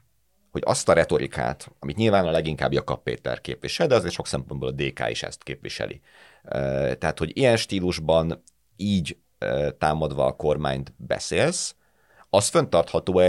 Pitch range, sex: 70-95 Hz, male